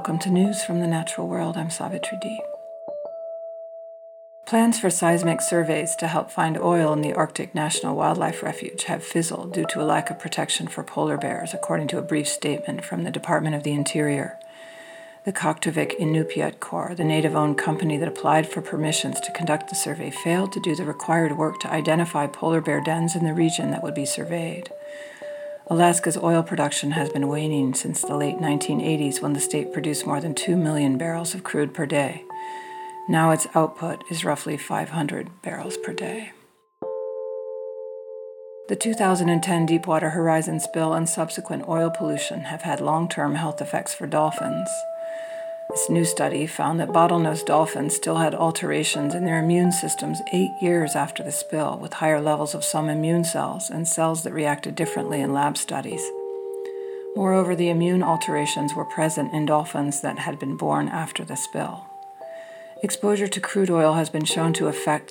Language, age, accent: English, 50-69, American